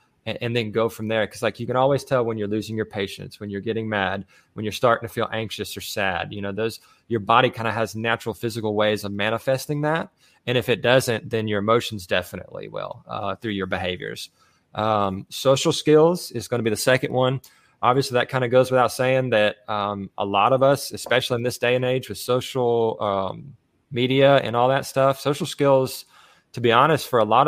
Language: English